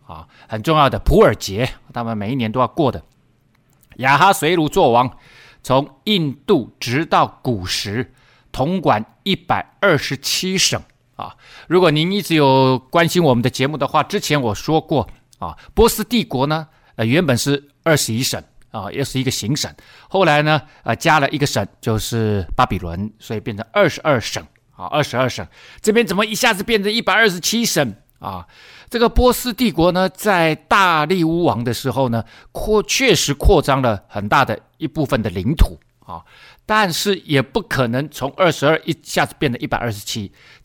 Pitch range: 115-170 Hz